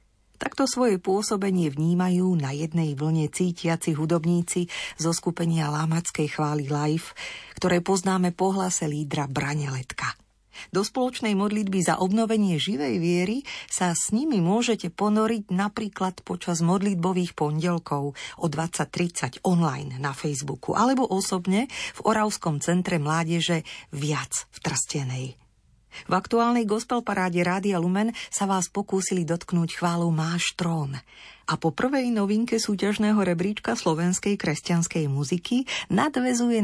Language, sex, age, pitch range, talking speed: Slovak, female, 40-59, 155-200 Hz, 120 wpm